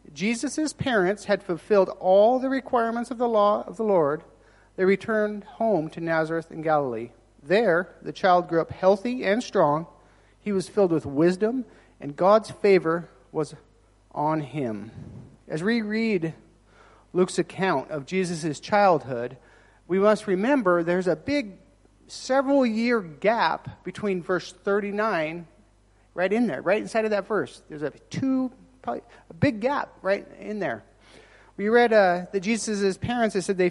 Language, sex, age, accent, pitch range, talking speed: English, male, 40-59, American, 170-220 Hz, 150 wpm